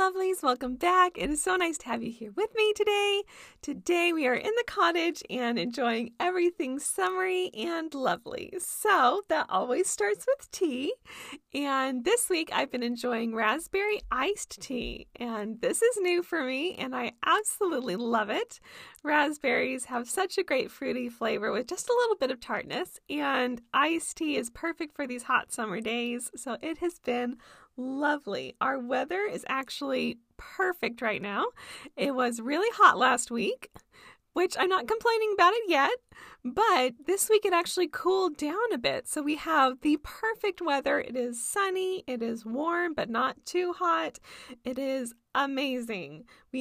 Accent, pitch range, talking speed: American, 250-365 Hz, 165 wpm